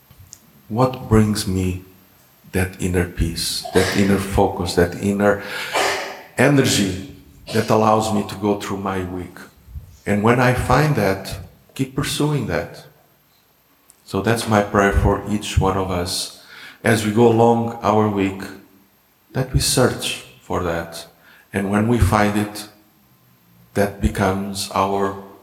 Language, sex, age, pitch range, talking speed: English, male, 50-69, 95-115 Hz, 130 wpm